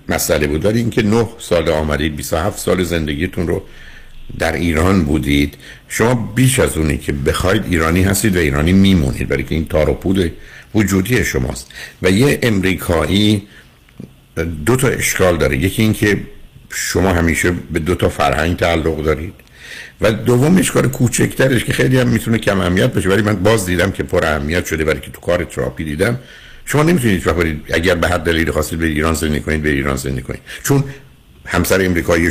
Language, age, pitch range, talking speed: Persian, 60-79, 75-110 Hz, 170 wpm